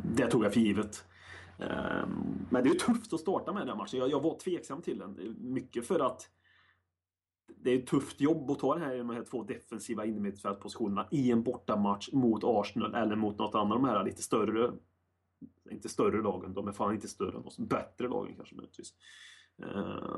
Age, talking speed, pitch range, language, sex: 20-39, 185 wpm, 95-125 Hz, Swedish, male